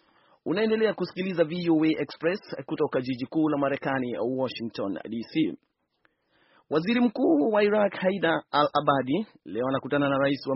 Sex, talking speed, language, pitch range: male, 130 wpm, Swahili, 130-150 Hz